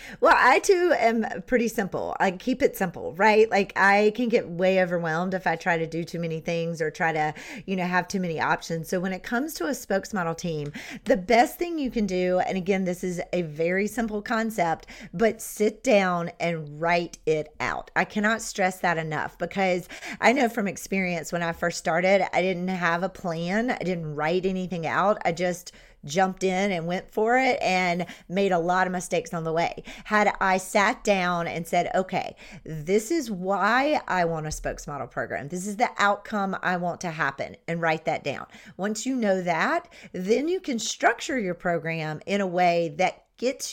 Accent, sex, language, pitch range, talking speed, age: American, female, English, 175-215 Hz, 200 wpm, 40-59